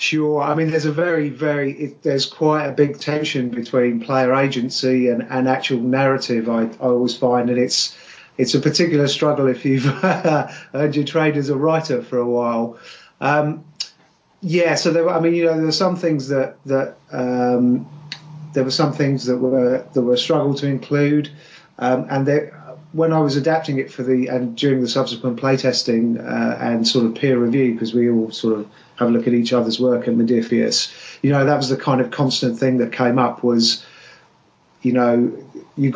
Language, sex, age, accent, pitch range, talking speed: English, male, 30-49, British, 125-150 Hz, 200 wpm